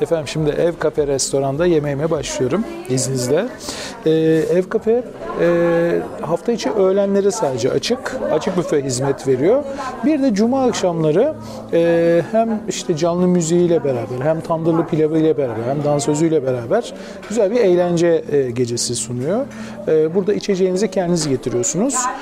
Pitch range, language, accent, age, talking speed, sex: 150-195 Hz, Turkish, native, 40-59, 140 wpm, male